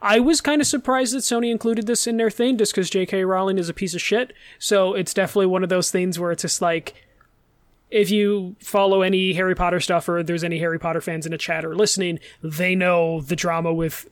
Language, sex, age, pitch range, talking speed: English, male, 20-39, 170-205 Hz, 235 wpm